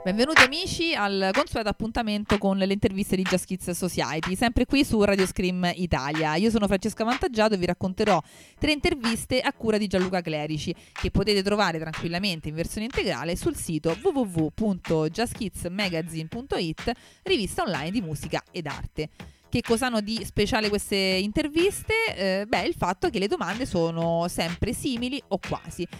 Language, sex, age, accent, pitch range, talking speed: Italian, female, 30-49, native, 170-220 Hz, 155 wpm